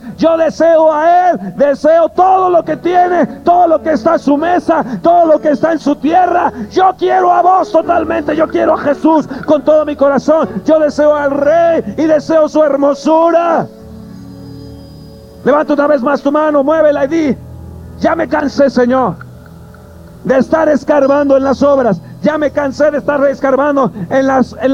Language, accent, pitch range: Spanish, Mexican, 250-310 Hz